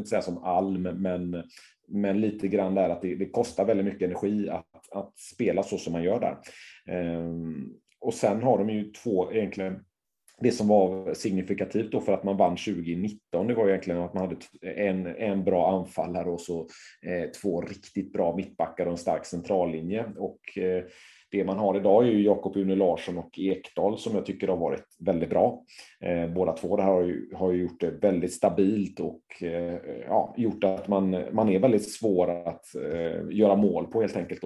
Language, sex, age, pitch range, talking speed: Swedish, male, 30-49, 85-100 Hz, 185 wpm